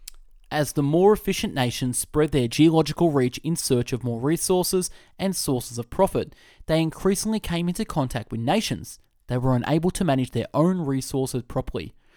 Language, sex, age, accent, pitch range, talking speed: English, male, 20-39, Australian, 125-175 Hz, 170 wpm